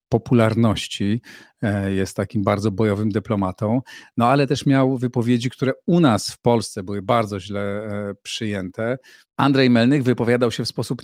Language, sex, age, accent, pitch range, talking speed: Polish, male, 40-59, native, 105-120 Hz, 140 wpm